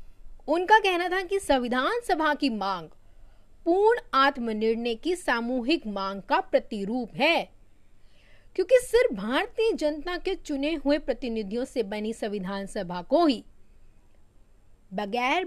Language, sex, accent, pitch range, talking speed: Hindi, female, native, 205-340 Hz, 120 wpm